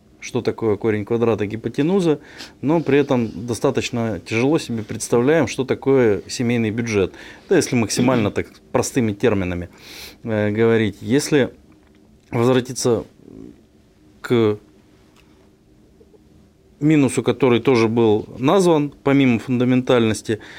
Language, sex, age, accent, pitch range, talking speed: Russian, male, 20-39, native, 105-130 Hz, 95 wpm